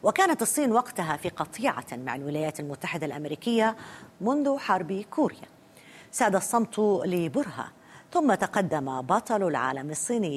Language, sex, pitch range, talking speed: Arabic, female, 155-240 Hz, 115 wpm